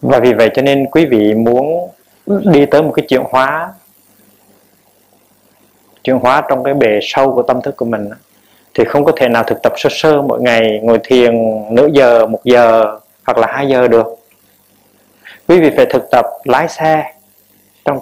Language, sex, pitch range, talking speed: Vietnamese, male, 115-140 Hz, 185 wpm